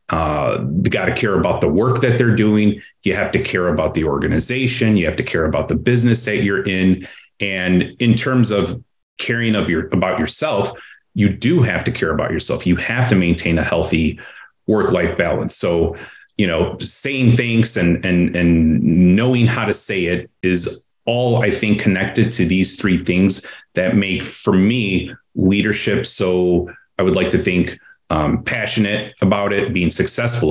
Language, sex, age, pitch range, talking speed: English, male, 30-49, 90-120 Hz, 175 wpm